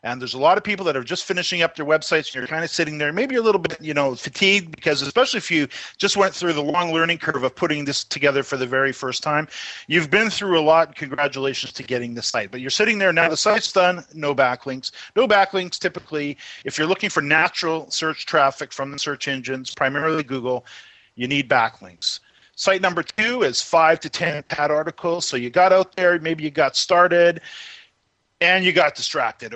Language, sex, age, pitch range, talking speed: English, male, 40-59, 135-180 Hz, 215 wpm